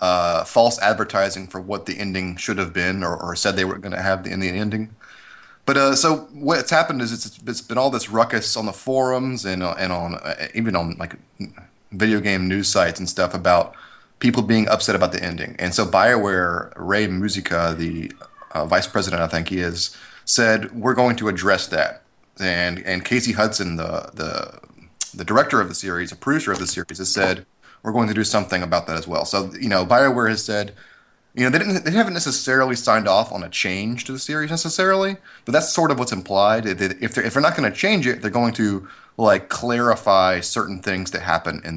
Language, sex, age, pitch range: English, male, 30-49, 95-120 Hz